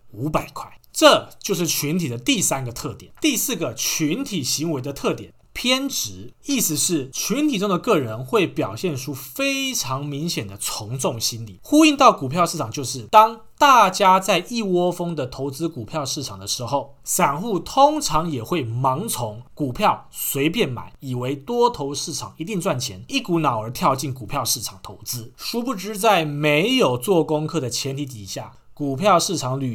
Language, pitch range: Chinese, 130-190 Hz